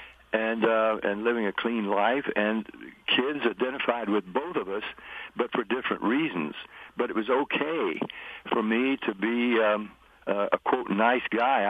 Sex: male